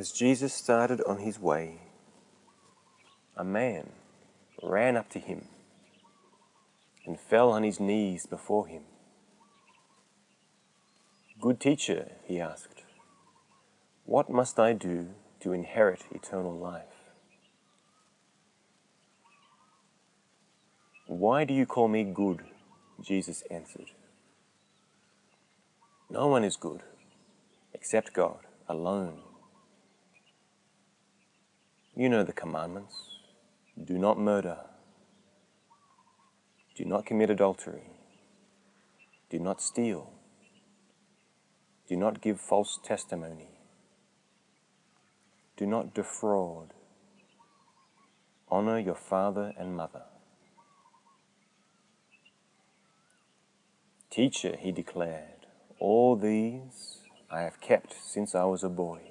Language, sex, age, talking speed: English, male, 30-49, 85 wpm